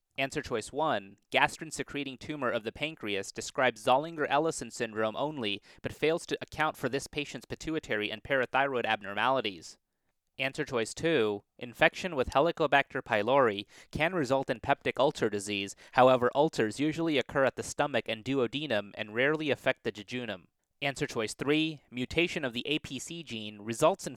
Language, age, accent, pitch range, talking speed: English, 30-49, American, 115-145 Hz, 150 wpm